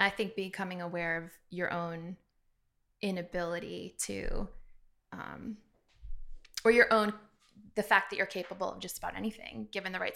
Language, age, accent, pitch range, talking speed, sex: English, 20-39, American, 180-215 Hz, 150 wpm, female